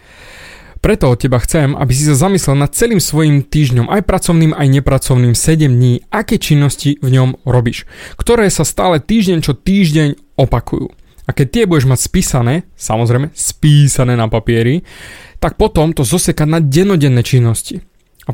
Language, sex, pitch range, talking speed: Slovak, male, 135-180 Hz, 155 wpm